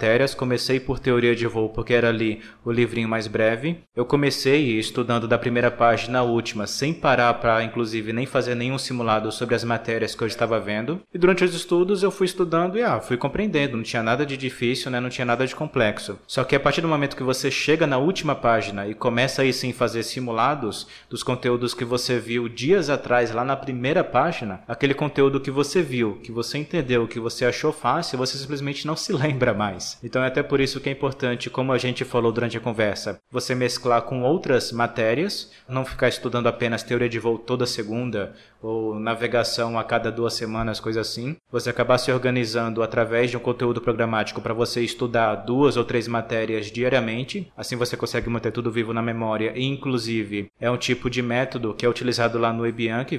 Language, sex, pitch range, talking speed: English, male, 115-130 Hz, 200 wpm